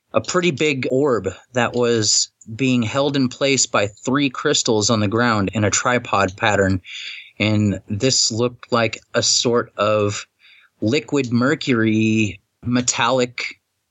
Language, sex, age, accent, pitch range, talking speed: English, male, 30-49, American, 105-130 Hz, 130 wpm